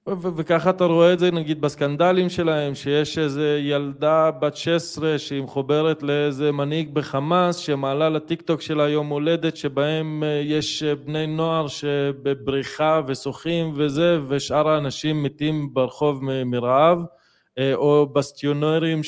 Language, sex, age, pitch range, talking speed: Hebrew, male, 20-39, 135-155 Hz, 135 wpm